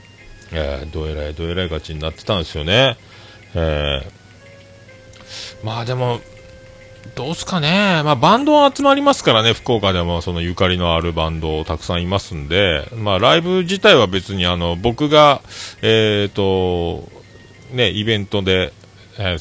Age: 40-59